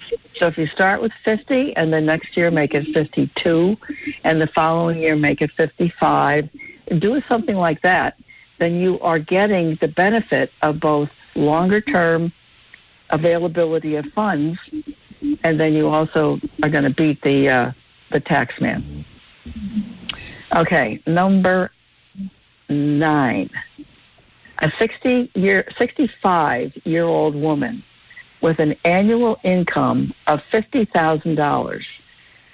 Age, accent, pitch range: 60-79, American, 155-195 Hz